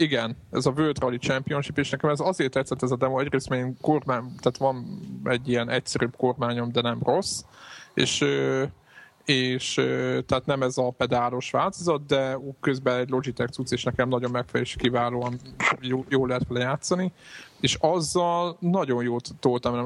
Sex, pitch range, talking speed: male, 120-140 Hz, 165 wpm